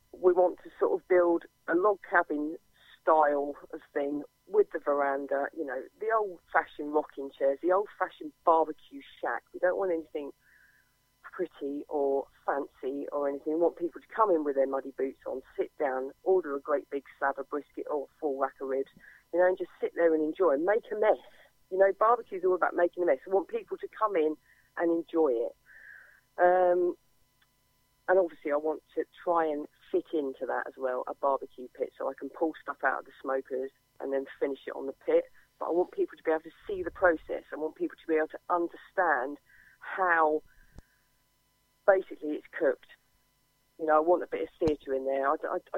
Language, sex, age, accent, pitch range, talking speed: English, female, 40-59, British, 140-190 Hz, 205 wpm